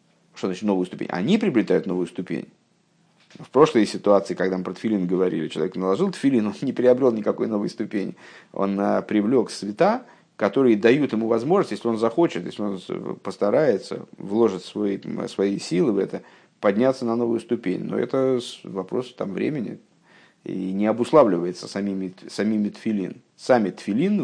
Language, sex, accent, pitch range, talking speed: Russian, male, native, 100-125 Hz, 150 wpm